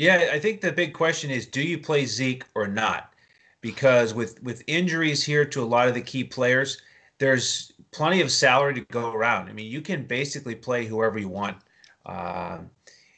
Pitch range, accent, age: 105-130 Hz, American, 30-49